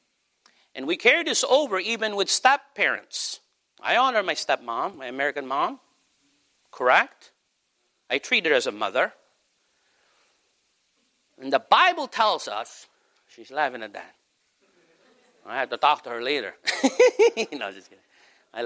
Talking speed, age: 135 wpm, 50-69